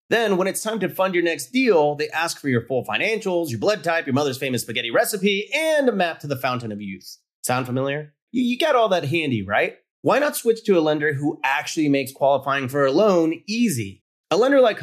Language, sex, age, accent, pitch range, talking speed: English, male, 30-49, American, 135-200 Hz, 230 wpm